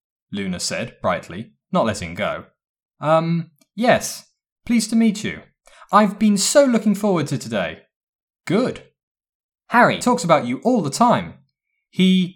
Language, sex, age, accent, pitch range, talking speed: English, male, 20-39, British, 135-225 Hz, 135 wpm